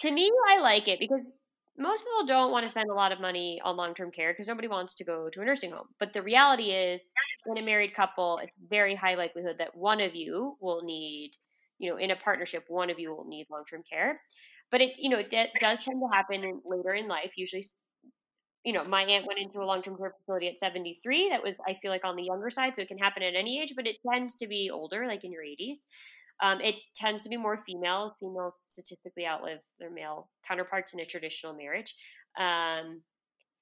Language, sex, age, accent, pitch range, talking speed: English, female, 20-39, American, 180-250 Hz, 230 wpm